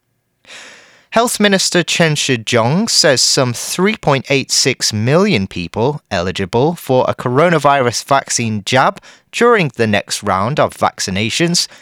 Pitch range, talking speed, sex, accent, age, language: 115-180 Hz, 105 wpm, male, British, 30-49, English